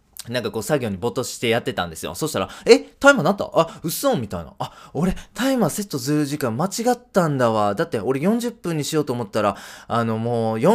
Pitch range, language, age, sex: 100-170 Hz, Japanese, 20-39, male